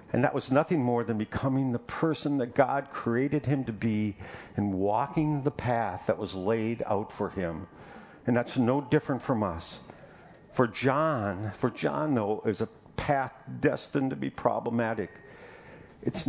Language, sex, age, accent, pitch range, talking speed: English, male, 50-69, American, 100-135 Hz, 160 wpm